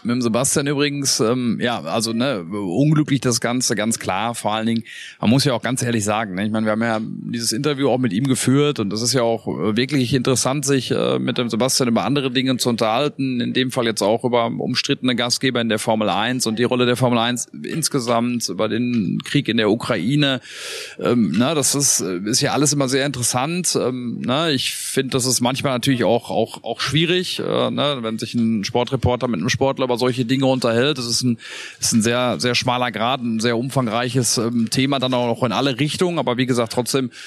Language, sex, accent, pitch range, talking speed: German, male, German, 115-135 Hz, 220 wpm